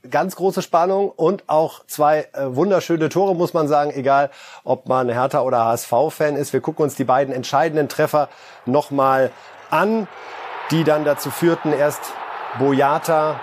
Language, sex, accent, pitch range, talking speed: German, male, German, 130-175 Hz, 150 wpm